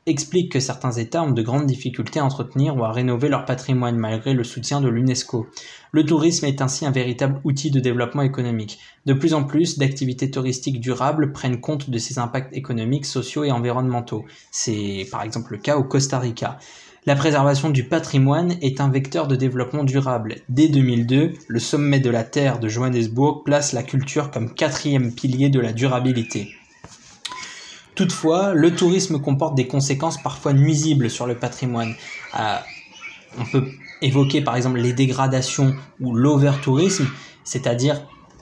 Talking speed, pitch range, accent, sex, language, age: 160 wpm, 125-145 Hz, French, male, French, 20-39